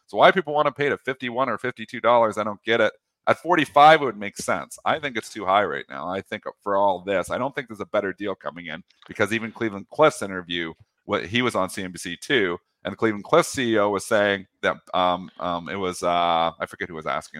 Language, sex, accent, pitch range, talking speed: English, male, American, 95-125 Hz, 245 wpm